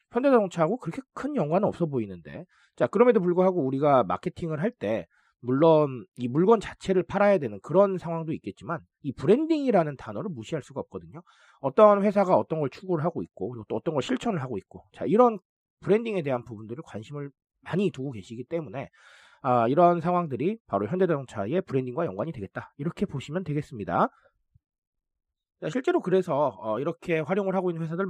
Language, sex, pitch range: Korean, male, 125-195 Hz